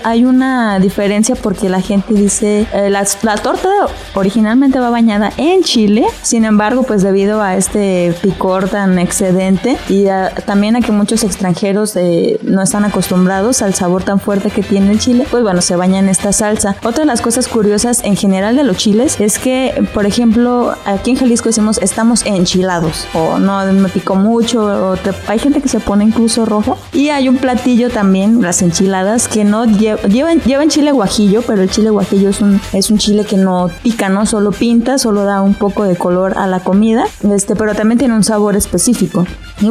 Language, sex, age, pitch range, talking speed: Spanish, female, 20-39, 195-230 Hz, 200 wpm